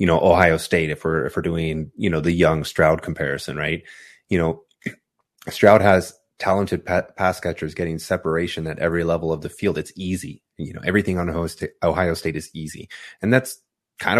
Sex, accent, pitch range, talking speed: male, American, 80-90 Hz, 200 wpm